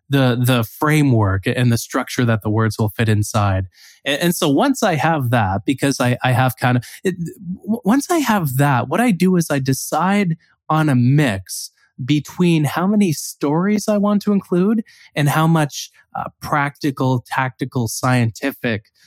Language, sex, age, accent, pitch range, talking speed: English, male, 20-39, American, 115-150 Hz, 175 wpm